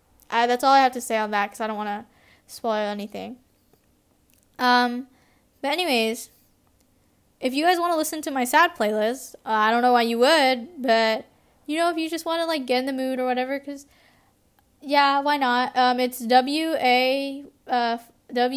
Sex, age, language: female, 10-29, English